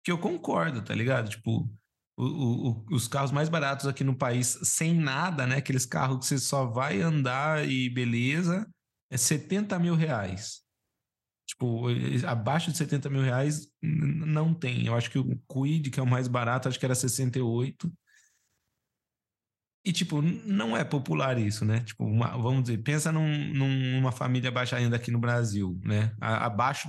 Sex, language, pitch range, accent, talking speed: male, Portuguese, 115-155 Hz, Brazilian, 170 wpm